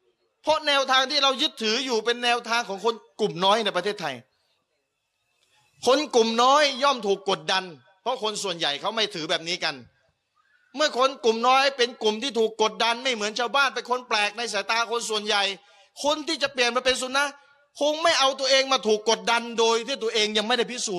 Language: Thai